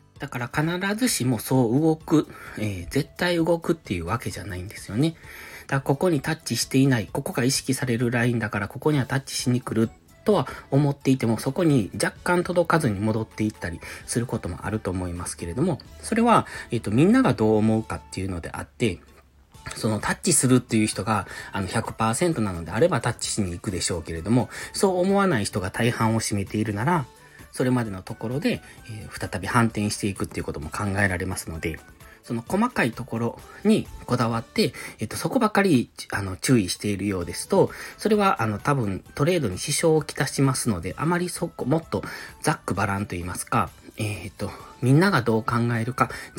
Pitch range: 100-150 Hz